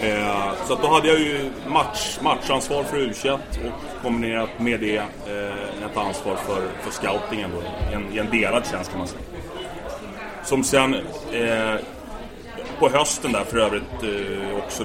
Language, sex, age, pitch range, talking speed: English, male, 30-49, 105-120 Hz, 160 wpm